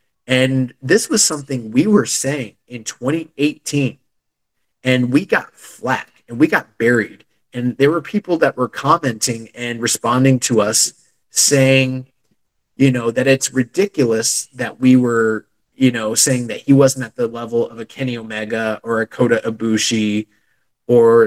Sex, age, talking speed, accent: male, 30-49, 155 wpm, American